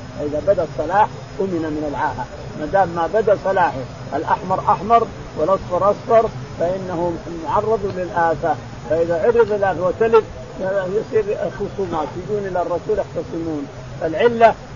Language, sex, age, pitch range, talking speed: Arabic, male, 50-69, 160-210 Hz, 120 wpm